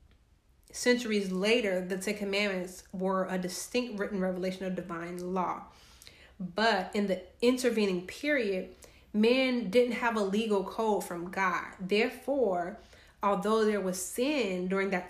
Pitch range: 180-200 Hz